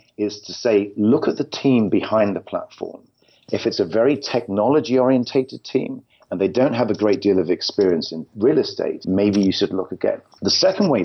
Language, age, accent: English, 40-59, British